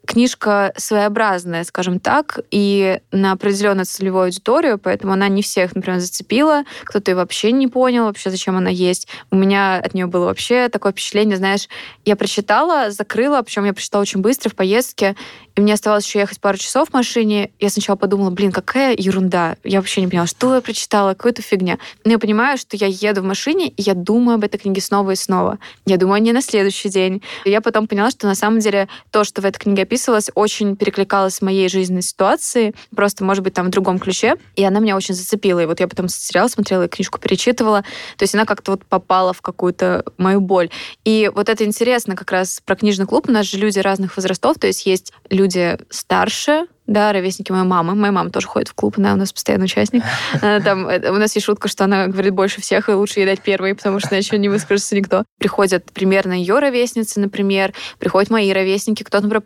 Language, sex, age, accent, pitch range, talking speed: Russian, female, 20-39, native, 190-215 Hz, 210 wpm